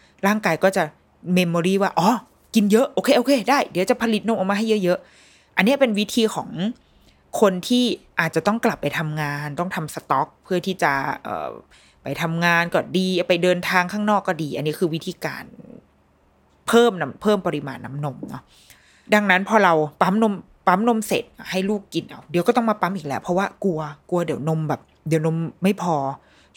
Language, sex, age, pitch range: Thai, female, 20-39, 155-205 Hz